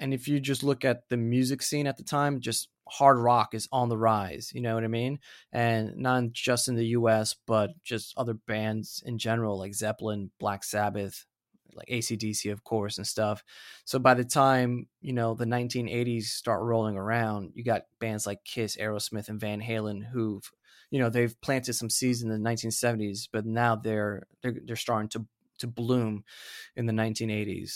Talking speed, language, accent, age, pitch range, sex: 190 wpm, English, American, 20-39, 110-125 Hz, male